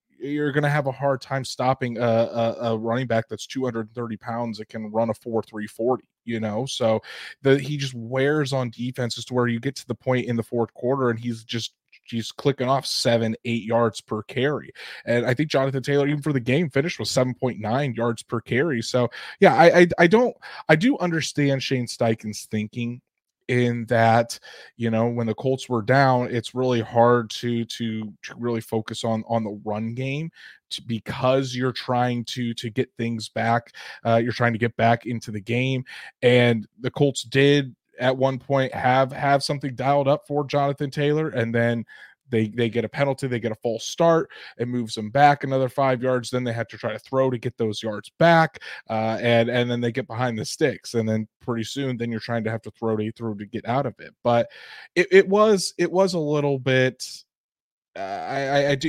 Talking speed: 210 wpm